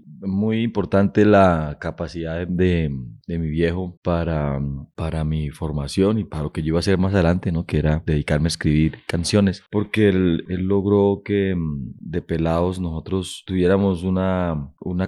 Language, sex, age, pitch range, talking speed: Spanish, male, 30-49, 80-90 Hz, 160 wpm